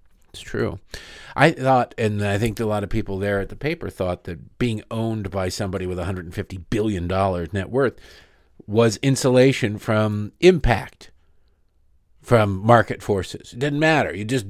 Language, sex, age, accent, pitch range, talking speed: English, male, 50-69, American, 95-120 Hz, 155 wpm